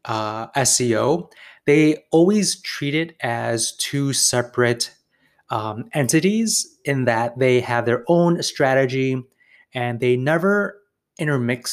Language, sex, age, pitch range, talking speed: English, male, 20-39, 120-160 Hz, 115 wpm